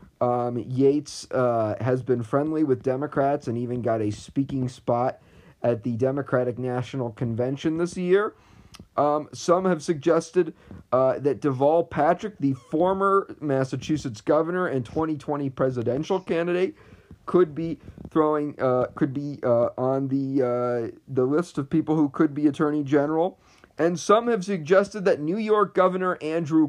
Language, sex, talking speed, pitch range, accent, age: English, male, 150 wpm, 125-155 Hz, American, 40-59